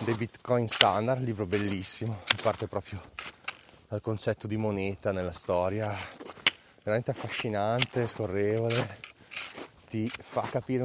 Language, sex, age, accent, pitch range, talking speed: Italian, male, 20-39, native, 95-110 Hz, 110 wpm